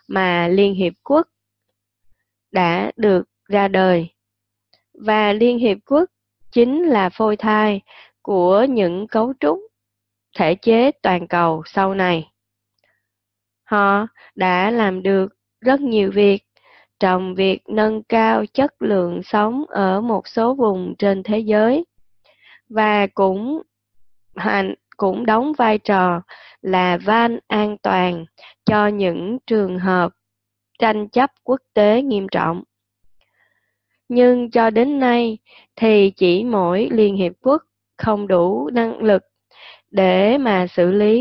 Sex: female